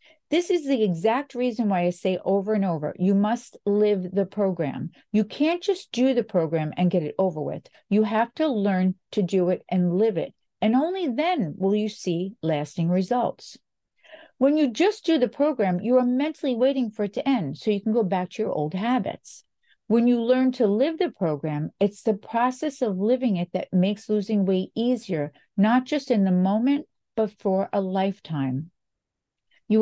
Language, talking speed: English, 195 wpm